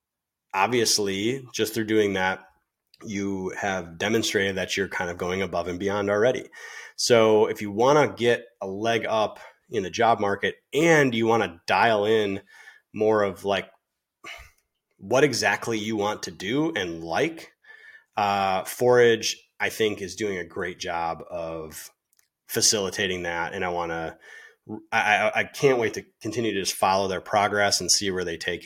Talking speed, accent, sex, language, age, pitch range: 165 wpm, American, male, English, 30-49, 90-115 Hz